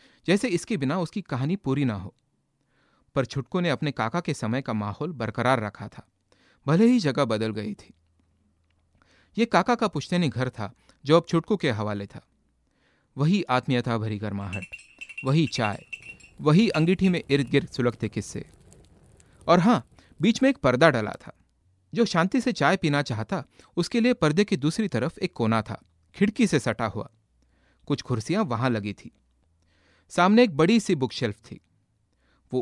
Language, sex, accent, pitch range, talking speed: Hindi, male, native, 105-165 Hz, 165 wpm